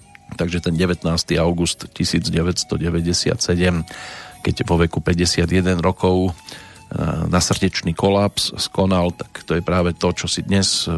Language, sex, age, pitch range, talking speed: Slovak, male, 40-59, 90-105 Hz, 120 wpm